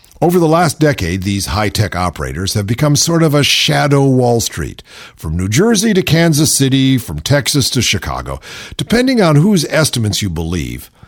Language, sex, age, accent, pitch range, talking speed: English, male, 50-69, American, 110-160 Hz, 170 wpm